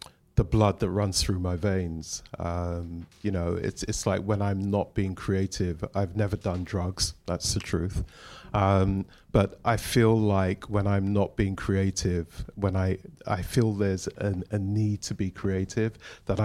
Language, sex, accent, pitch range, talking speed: English, male, British, 95-105 Hz, 170 wpm